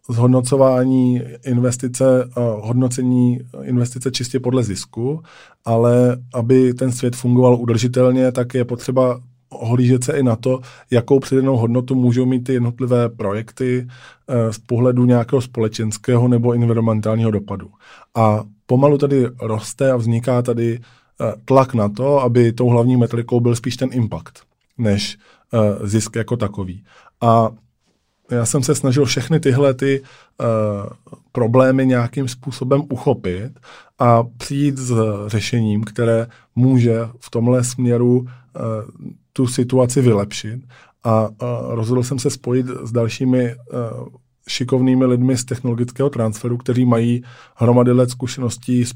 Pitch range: 115-130 Hz